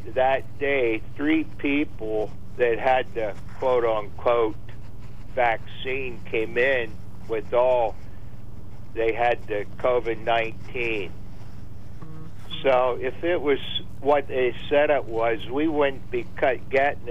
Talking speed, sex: 105 wpm, male